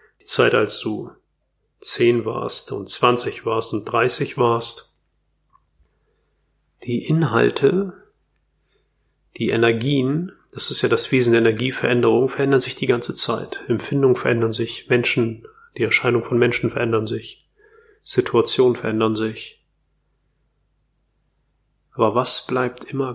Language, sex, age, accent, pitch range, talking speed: German, male, 30-49, German, 115-130 Hz, 115 wpm